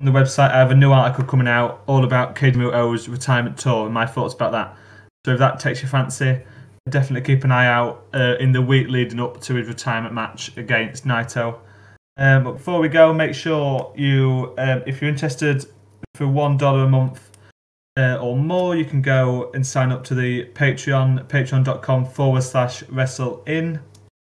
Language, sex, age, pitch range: English, male, 20-39, 120-135 Hz